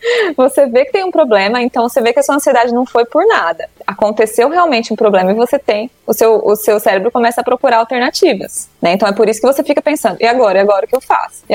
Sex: female